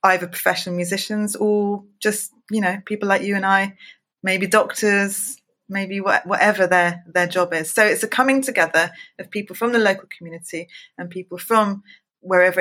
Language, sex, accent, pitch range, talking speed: English, female, British, 180-215 Hz, 170 wpm